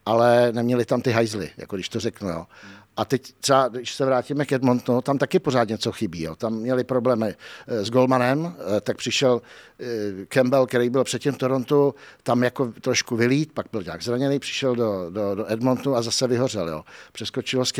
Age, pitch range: 60-79, 115-130 Hz